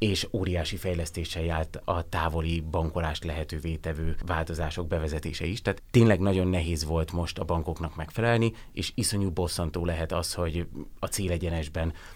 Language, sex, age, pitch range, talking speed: Hungarian, male, 30-49, 80-90 Hz, 145 wpm